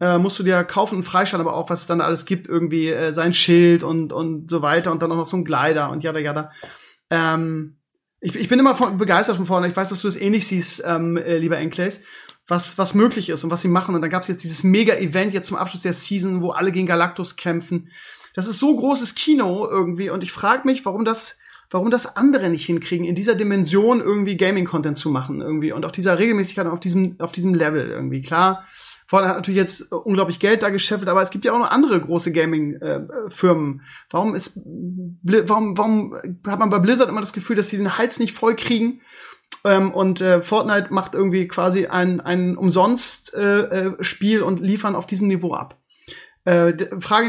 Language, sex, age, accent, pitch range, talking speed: German, male, 30-49, German, 175-205 Hz, 205 wpm